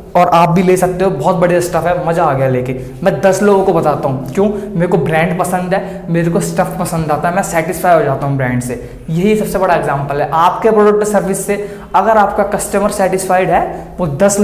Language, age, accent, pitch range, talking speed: Hindi, 20-39, native, 170-200 Hz, 235 wpm